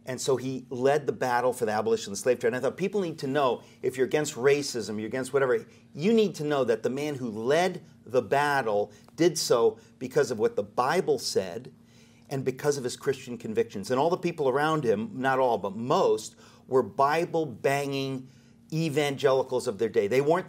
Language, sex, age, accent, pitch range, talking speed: English, male, 40-59, American, 120-170 Hz, 210 wpm